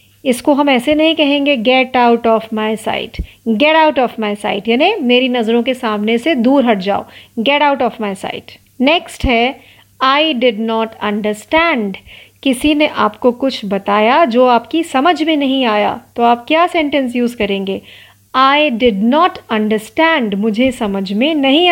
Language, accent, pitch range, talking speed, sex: Marathi, native, 225-290 Hz, 165 wpm, female